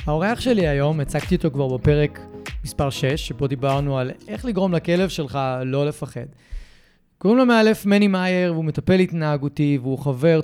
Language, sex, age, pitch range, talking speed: Hebrew, male, 30-49, 140-180 Hz, 160 wpm